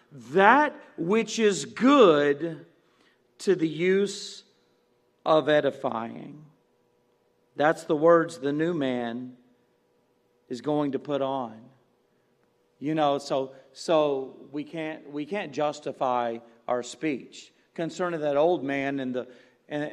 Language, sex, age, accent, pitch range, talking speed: English, male, 40-59, American, 135-185 Hz, 115 wpm